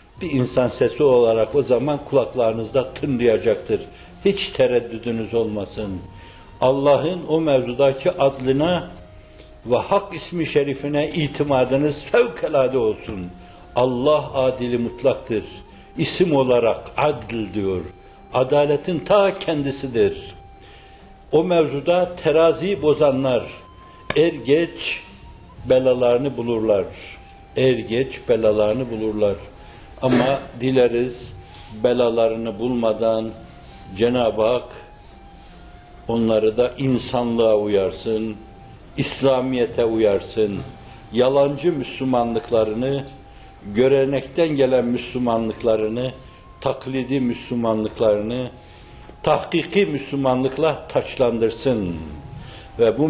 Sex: male